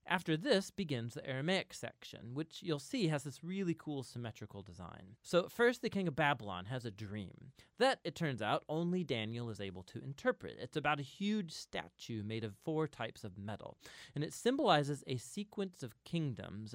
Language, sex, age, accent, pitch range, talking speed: English, male, 30-49, American, 110-165 Hz, 185 wpm